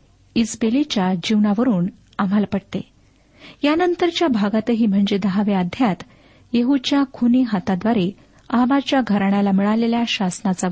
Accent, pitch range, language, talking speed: native, 200-255 Hz, Marathi, 90 wpm